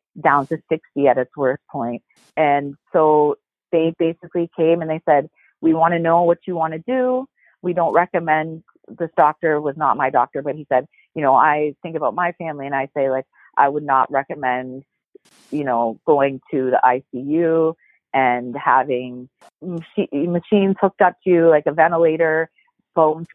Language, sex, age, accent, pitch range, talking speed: English, female, 30-49, American, 150-180 Hz, 175 wpm